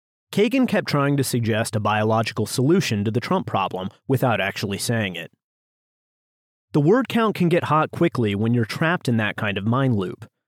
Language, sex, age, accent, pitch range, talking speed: English, male, 30-49, American, 115-155 Hz, 185 wpm